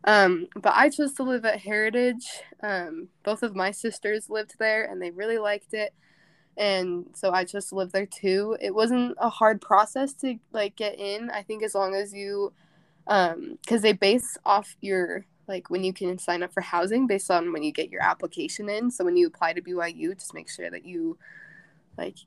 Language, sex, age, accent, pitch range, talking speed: English, female, 20-39, American, 175-220 Hz, 205 wpm